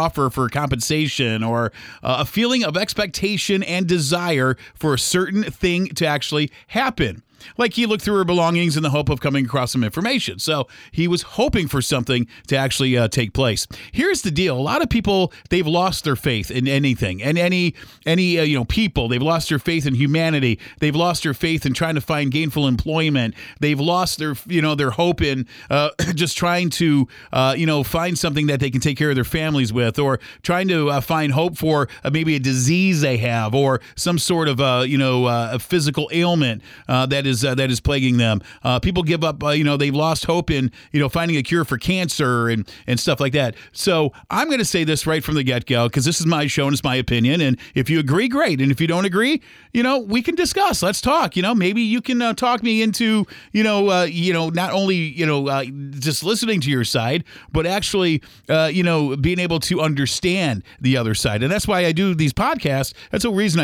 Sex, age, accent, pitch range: male, 40-59, American, 130-175 Hz